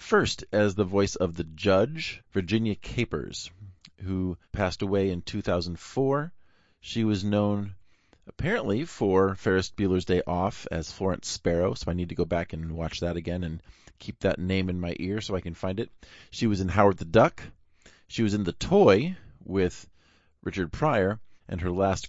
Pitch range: 85-100 Hz